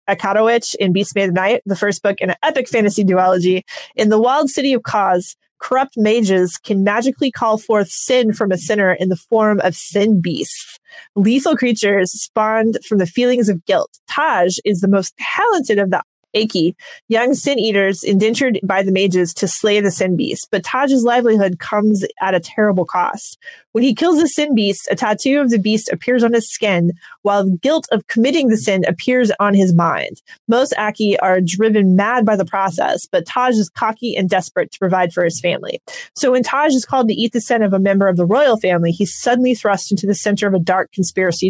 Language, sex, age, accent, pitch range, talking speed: English, female, 20-39, American, 195-250 Hz, 205 wpm